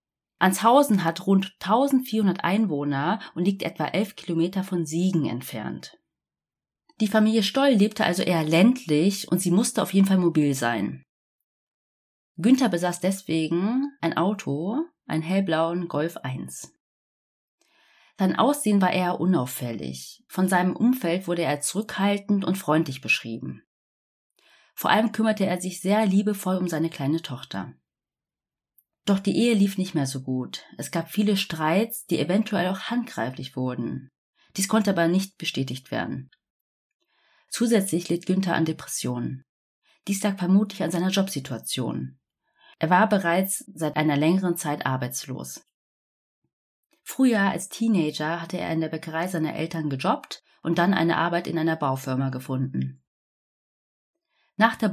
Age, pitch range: 30-49, 150-205 Hz